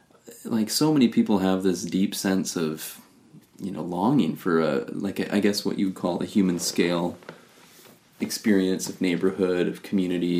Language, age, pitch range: English, 30-49, 90-105 Hz